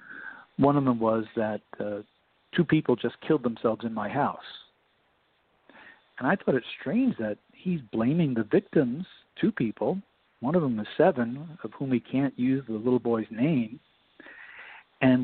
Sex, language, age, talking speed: male, English, 50-69, 160 wpm